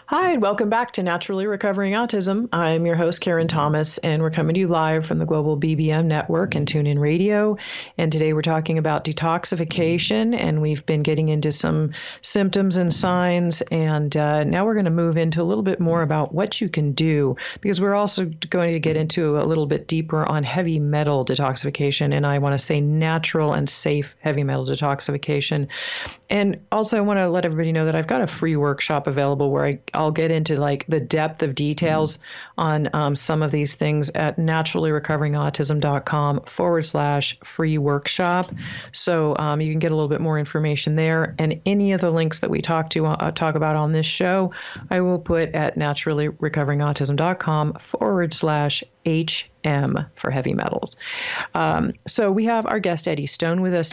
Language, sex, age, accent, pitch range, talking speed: English, female, 40-59, American, 150-180 Hz, 190 wpm